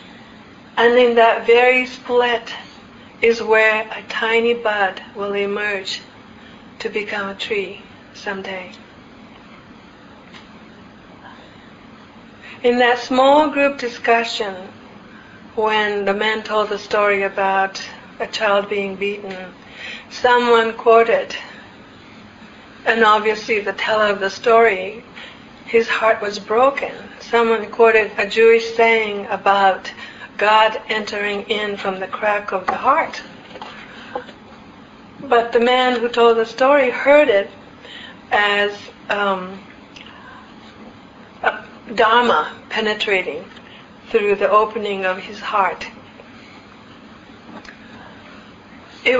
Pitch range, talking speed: 205-245 Hz, 100 wpm